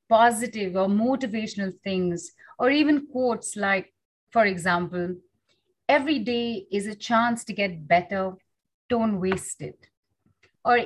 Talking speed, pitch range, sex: 120 wpm, 185-260 Hz, female